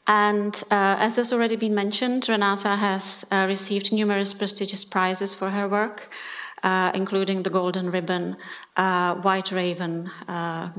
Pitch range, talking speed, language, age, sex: 185-210 Hz, 145 wpm, English, 30-49, female